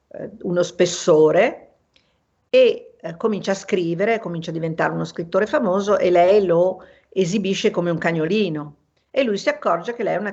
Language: Italian